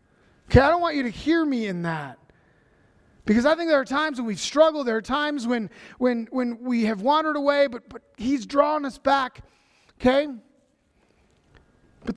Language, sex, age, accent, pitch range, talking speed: English, male, 30-49, American, 190-265 Hz, 180 wpm